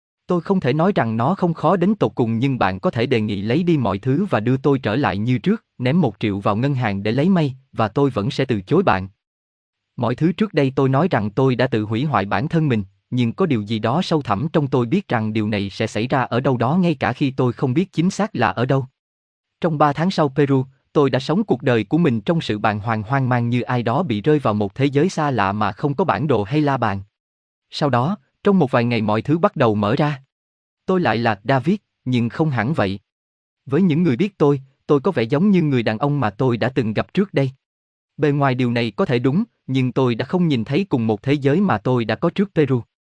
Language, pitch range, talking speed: Vietnamese, 115-160 Hz, 265 wpm